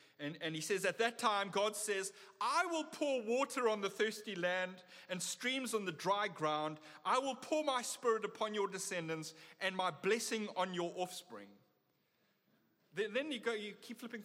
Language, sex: English, male